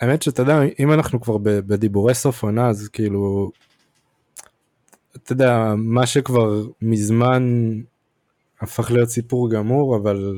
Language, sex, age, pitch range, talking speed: Hebrew, male, 20-39, 105-130 Hz, 115 wpm